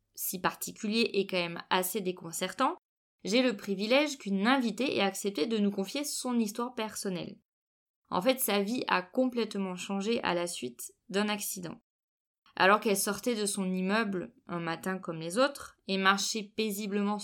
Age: 20-39